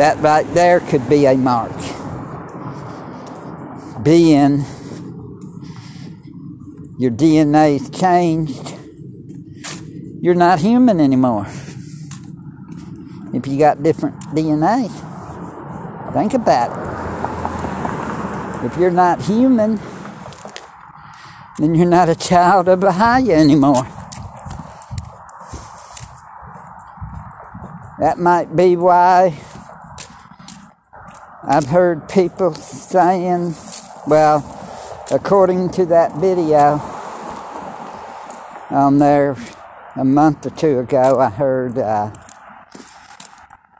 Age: 60-79